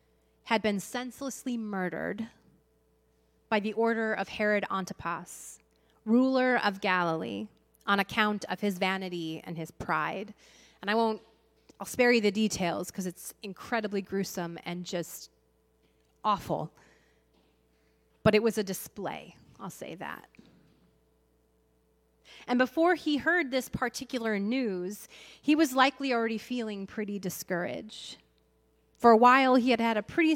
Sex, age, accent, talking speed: female, 30-49, American, 130 wpm